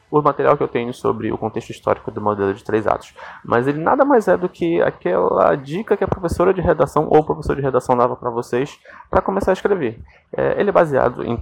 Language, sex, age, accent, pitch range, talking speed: Portuguese, male, 20-39, Brazilian, 120-150 Hz, 225 wpm